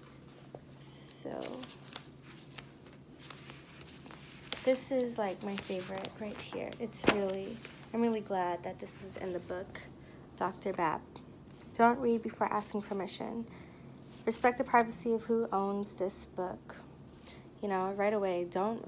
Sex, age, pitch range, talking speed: female, 20-39, 190-215 Hz, 125 wpm